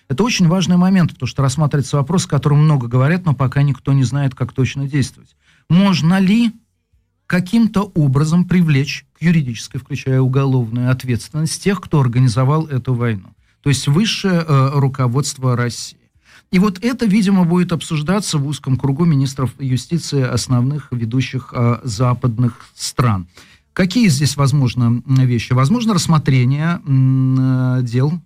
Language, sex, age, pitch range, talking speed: Russian, male, 40-59, 125-165 Hz, 135 wpm